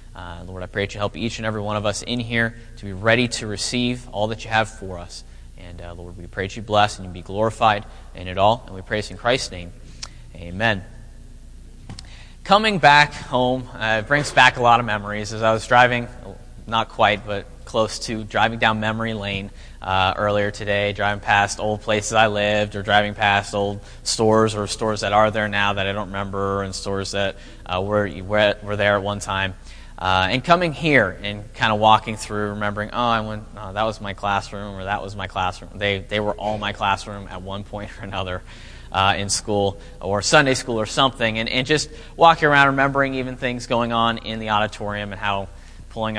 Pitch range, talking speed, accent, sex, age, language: 100-115 Hz, 215 wpm, American, male, 20-39, English